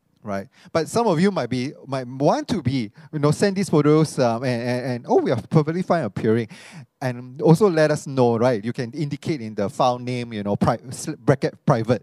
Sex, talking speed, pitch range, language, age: male, 220 wpm, 120-160 Hz, English, 30-49